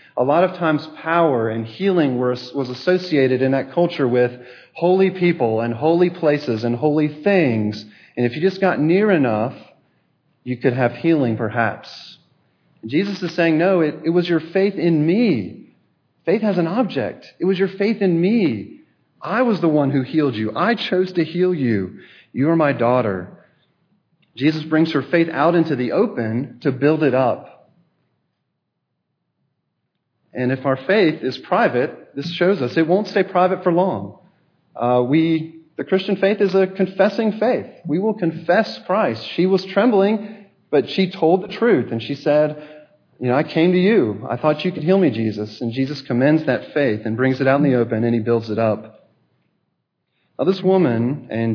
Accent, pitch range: American, 125-185 Hz